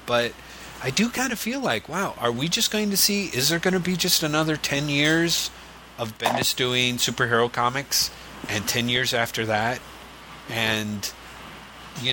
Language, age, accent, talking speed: English, 30-49, American, 175 wpm